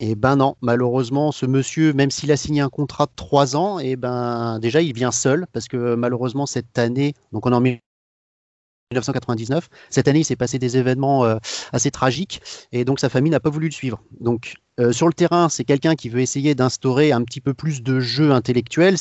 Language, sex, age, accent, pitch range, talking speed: French, male, 30-49, French, 125-155 Hz, 215 wpm